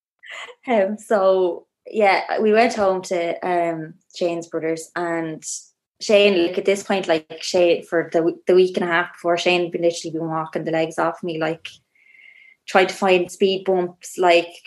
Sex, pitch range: female, 170-195 Hz